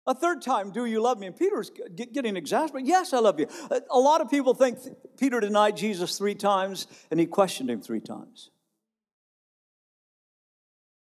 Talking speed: 170 wpm